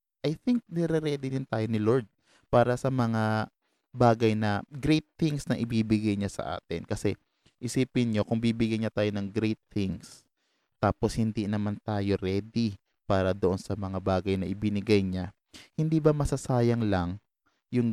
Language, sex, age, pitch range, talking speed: Filipino, male, 20-39, 105-135 Hz, 155 wpm